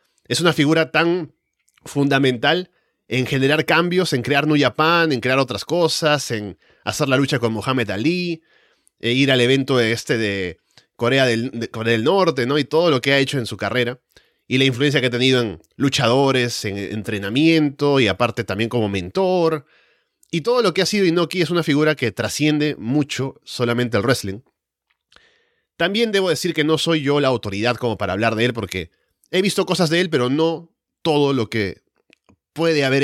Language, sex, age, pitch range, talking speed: Spanish, male, 30-49, 115-155 Hz, 185 wpm